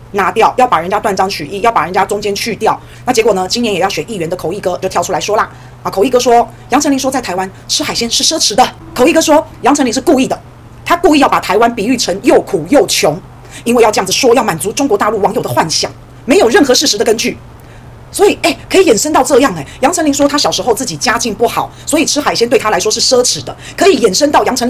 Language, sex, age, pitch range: Chinese, female, 30-49, 195-275 Hz